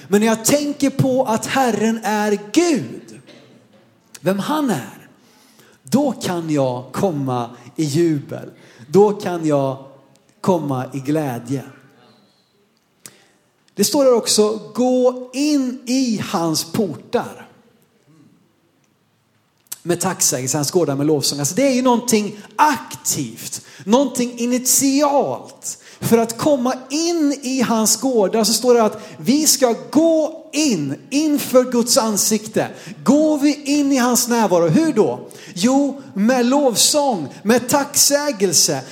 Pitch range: 165-265 Hz